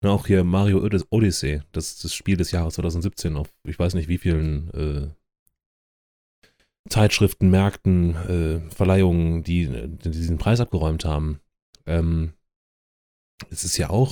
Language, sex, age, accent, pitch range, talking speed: German, male, 30-49, German, 80-110 Hz, 140 wpm